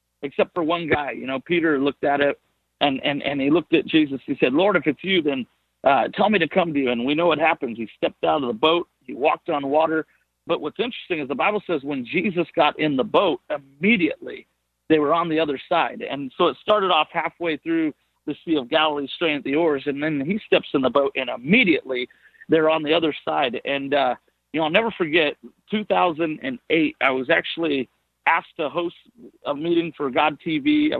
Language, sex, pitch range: English, male, 140-175 Hz